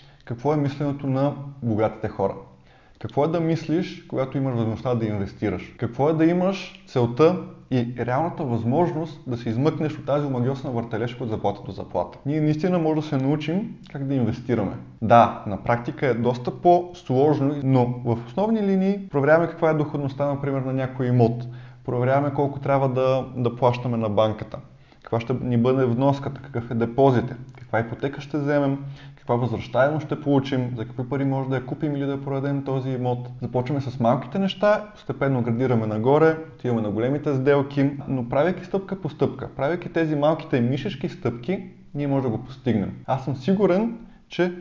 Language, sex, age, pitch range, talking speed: Bulgarian, male, 20-39, 120-155 Hz, 170 wpm